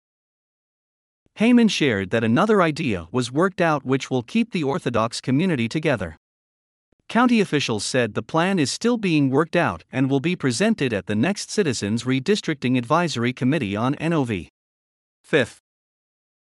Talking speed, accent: 140 wpm, American